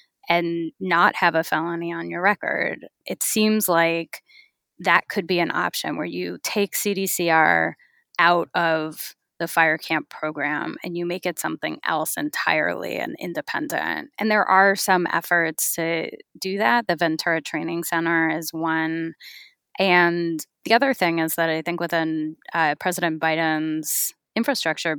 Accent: American